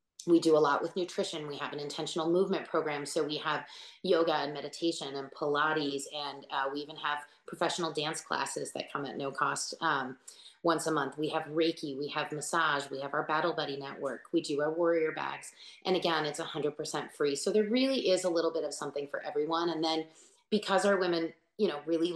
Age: 30-49